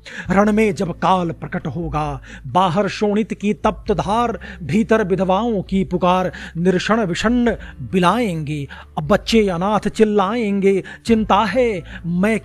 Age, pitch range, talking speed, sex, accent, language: 40-59, 185-225 Hz, 120 wpm, male, native, Hindi